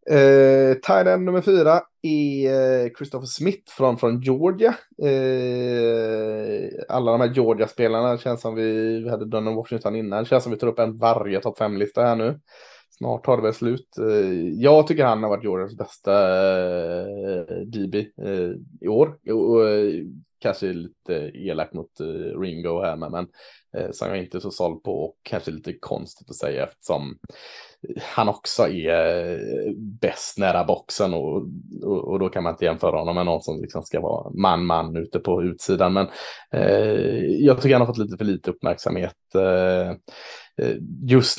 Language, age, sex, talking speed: Swedish, 20-39, male, 170 wpm